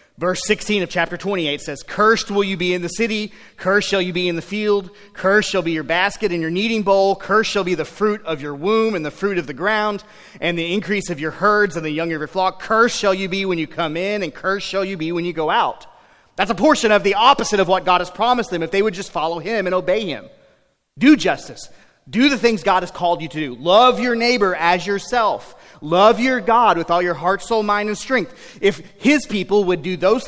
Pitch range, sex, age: 170-210 Hz, male, 30-49